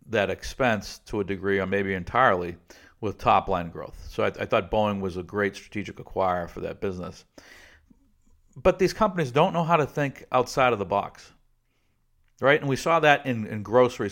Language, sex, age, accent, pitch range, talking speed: English, male, 50-69, American, 95-115 Hz, 195 wpm